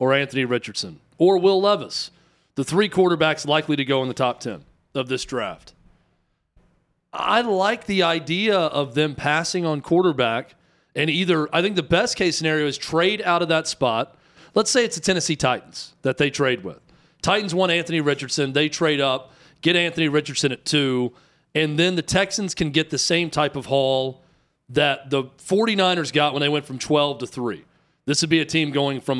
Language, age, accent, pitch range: English, 40-59, American, 140-175 Hz